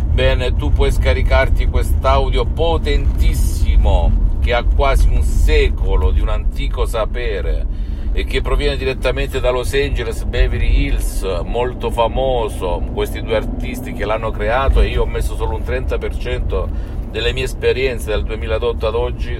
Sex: male